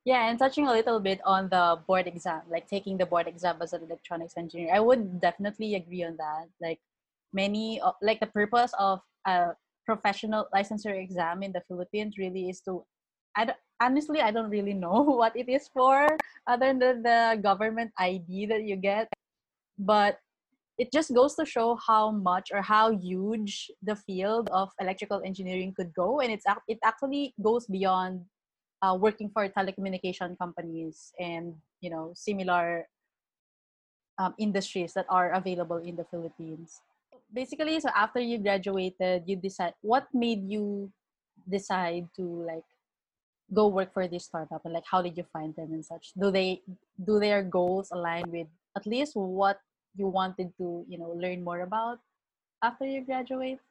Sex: female